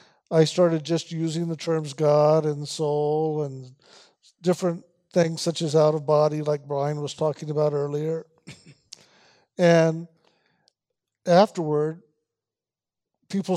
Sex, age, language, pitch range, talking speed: male, 50-69, English, 155-180 Hz, 115 wpm